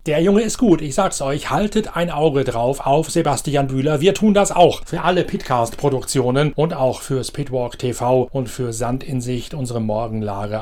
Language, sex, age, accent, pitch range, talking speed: German, male, 40-59, German, 120-150 Hz, 185 wpm